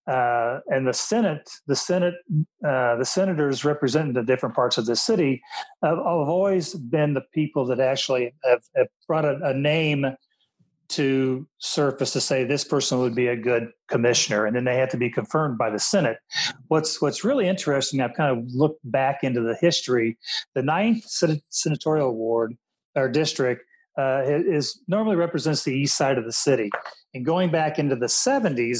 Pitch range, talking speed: 125-160 Hz, 175 wpm